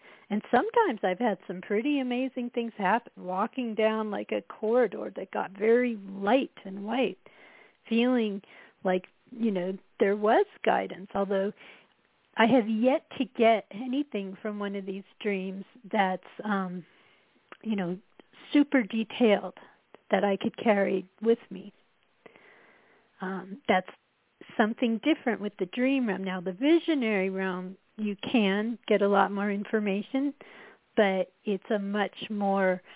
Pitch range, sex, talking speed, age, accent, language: 195-230 Hz, female, 135 wpm, 40-59, American, English